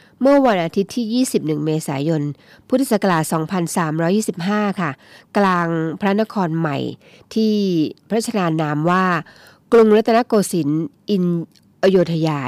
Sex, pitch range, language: female, 160-210 Hz, Thai